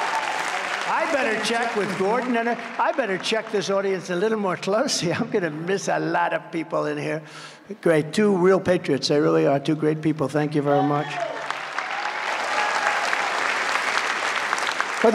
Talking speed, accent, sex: 150 wpm, American, male